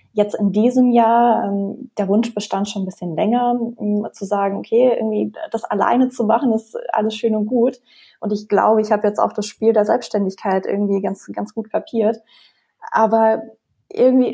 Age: 20-39